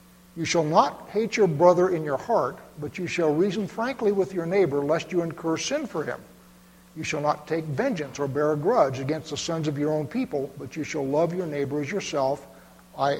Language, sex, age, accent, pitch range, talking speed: English, male, 60-79, American, 140-180 Hz, 220 wpm